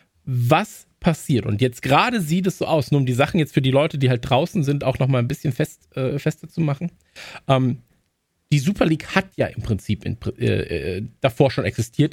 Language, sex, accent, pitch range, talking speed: German, male, German, 125-165 Hz, 210 wpm